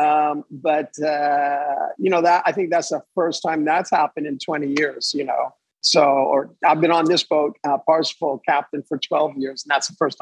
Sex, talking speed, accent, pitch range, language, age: male, 210 wpm, American, 150-185 Hz, English, 50-69